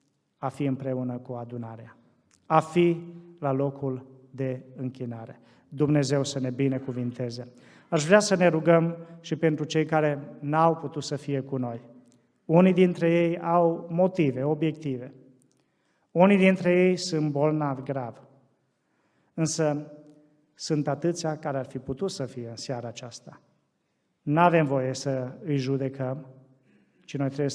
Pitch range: 130-165 Hz